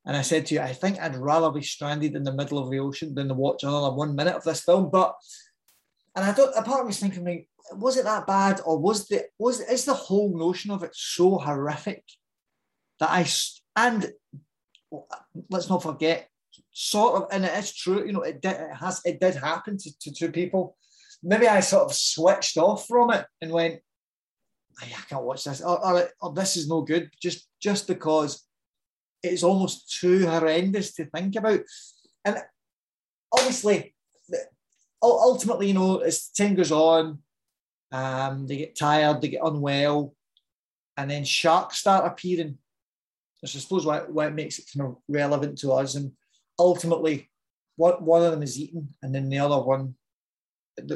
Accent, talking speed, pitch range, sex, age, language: British, 185 wpm, 145-190 Hz, male, 20-39, English